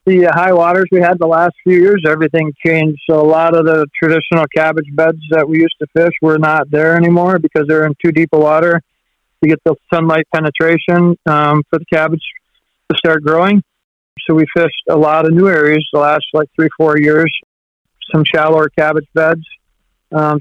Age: 50-69